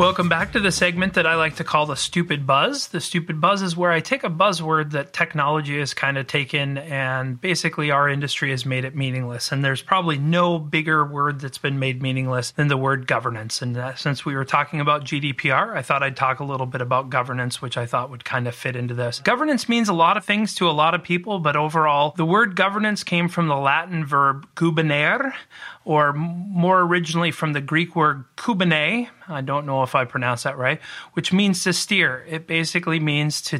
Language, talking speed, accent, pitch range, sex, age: English, 220 wpm, American, 140-170 Hz, male, 30-49